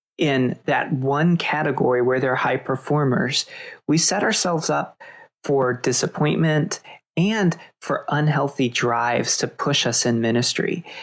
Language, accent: English, American